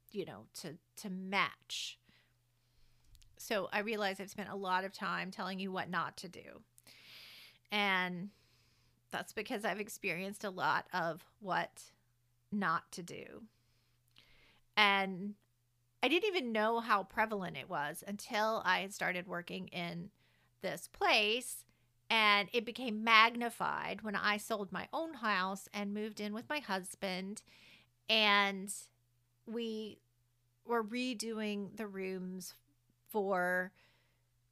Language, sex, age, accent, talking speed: English, female, 40-59, American, 125 wpm